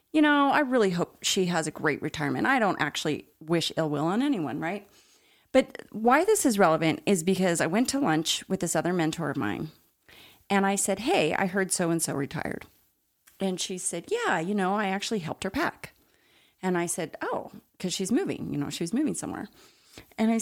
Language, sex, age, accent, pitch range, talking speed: English, female, 30-49, American, 165-225 Hz, 205 wpm